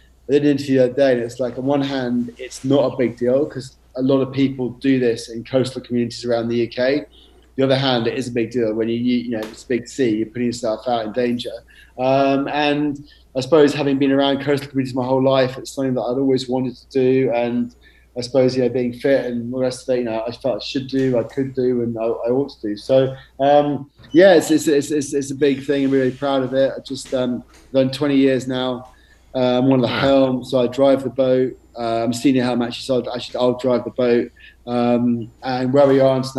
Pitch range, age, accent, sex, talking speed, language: 120-135 Hz, 30-49, British, male, 255 wpm, English